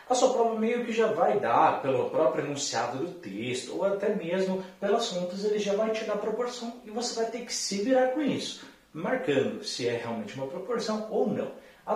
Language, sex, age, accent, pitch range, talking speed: Portuguese, male, 30-49, Brazilian, 150-230 Hz, 210 wpm